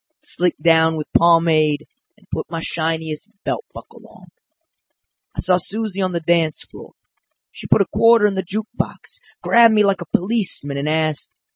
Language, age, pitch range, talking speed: English, 30-49, 155-220 Hz, 165 wpm